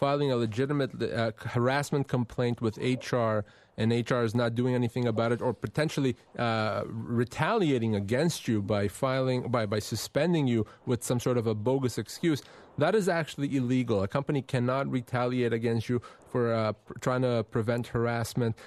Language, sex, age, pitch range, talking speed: English, male, 30-49, 120-140 Hz, 165 wpm